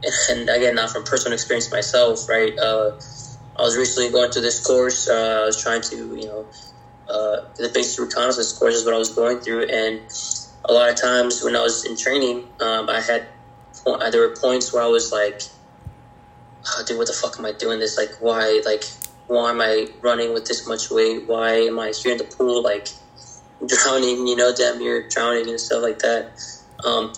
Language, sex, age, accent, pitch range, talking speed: English, male, 20-39, American, 115-125 Hz, 210 wpm